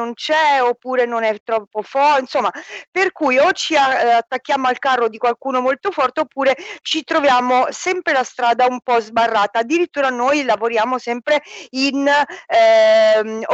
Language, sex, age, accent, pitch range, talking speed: Italian, female, 40-59, native, 235-295 Hz, 150 wpm